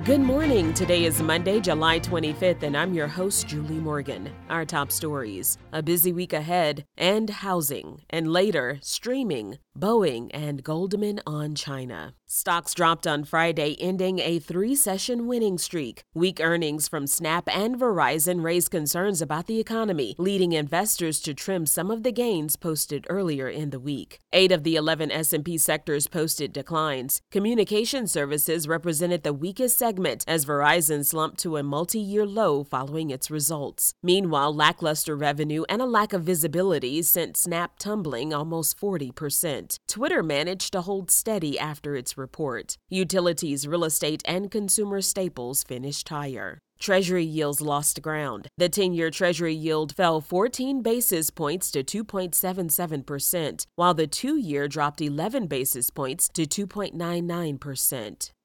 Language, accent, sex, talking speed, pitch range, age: English, American, female, 145 wpm, 150-185 Hz, 30-49